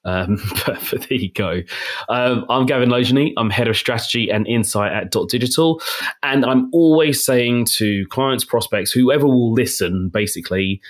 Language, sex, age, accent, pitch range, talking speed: English, male, 30-49, British, 105-140 Hz, 160 wpm